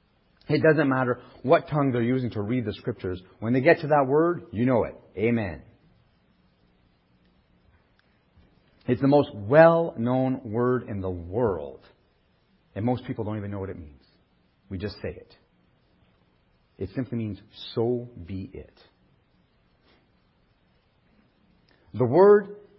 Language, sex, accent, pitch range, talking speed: English, male, American, 105-145 Hz, 135 wpm